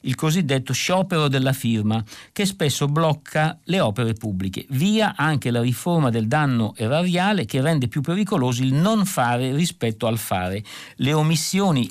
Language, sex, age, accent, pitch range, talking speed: Italian, male, 50-69, native, 120-155 Hz, 150 wpm